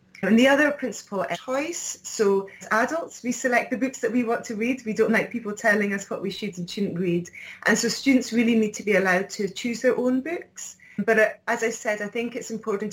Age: 30-49